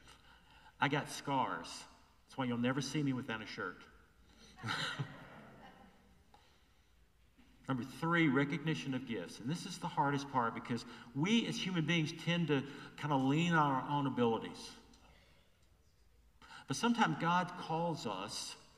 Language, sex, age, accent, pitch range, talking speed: English, male, 50-69, American, 90-150 Hz, 135 wpm